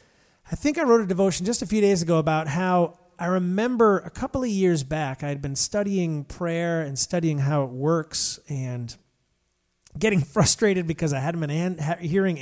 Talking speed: 190 wpm